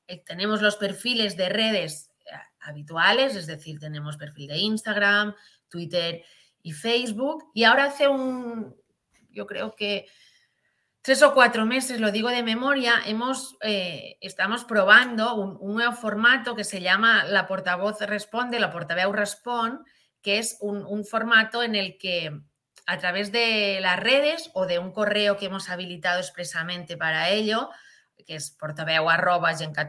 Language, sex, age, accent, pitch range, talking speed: Spanish, female, 30-49, Spanish, 180-235 Hz, 150 wpm